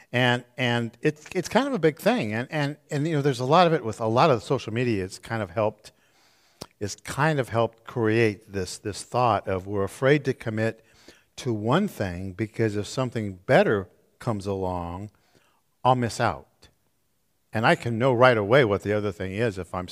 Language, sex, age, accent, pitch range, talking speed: English, male, 50-69, American, 100-130 Hz, 205 wpm